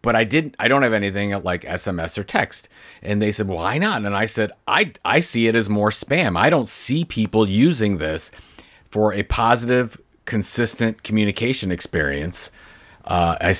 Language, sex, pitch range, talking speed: English, male, 85-110 Hz, 175 wpm